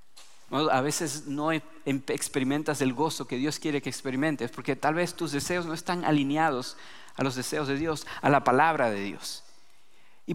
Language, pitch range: English, 130-170 Hz